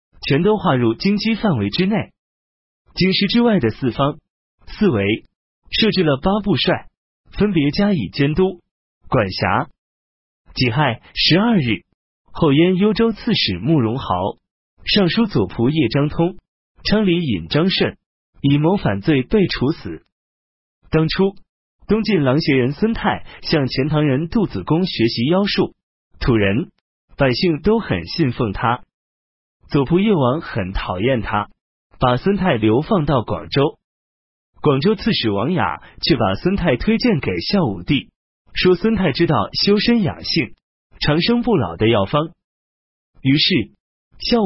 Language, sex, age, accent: Chinese, male, 30-49, native